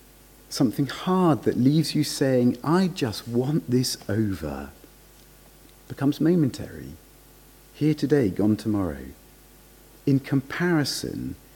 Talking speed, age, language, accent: 100 wpm, 50-69, English, British